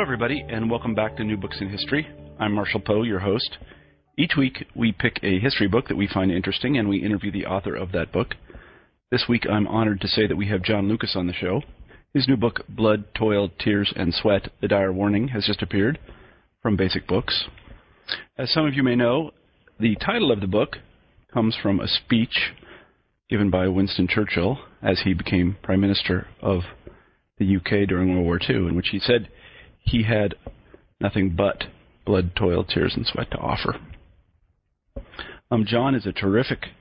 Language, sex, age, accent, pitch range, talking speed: English, male, 40-59, American, 95-115 Hz, 190 wpm